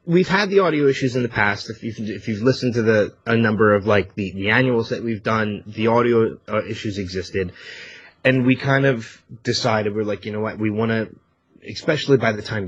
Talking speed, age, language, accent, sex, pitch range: 220 wpm, 30-49, English, American, male, 100-120 Hz